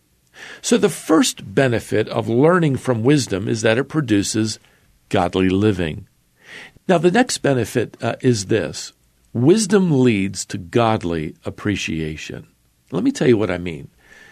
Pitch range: 95-135 Hz